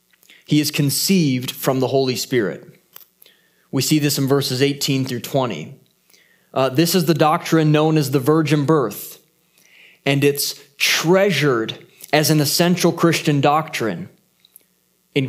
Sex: male